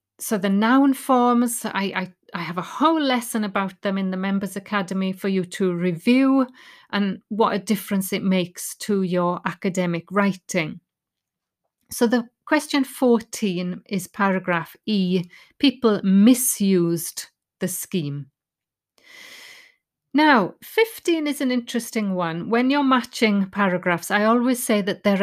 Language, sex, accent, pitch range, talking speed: English, female, British, 185-250 Hz, 135 wpm